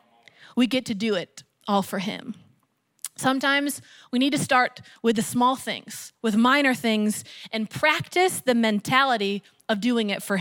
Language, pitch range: English, 230-300 Hz